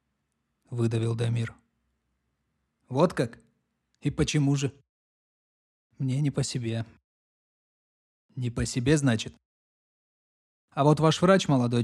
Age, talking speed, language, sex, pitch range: 20-39, 100 wpm, Russian, male, 115-145 Hz